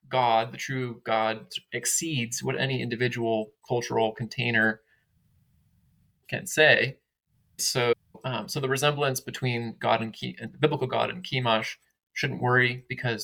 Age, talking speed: 20-39, 135 wpm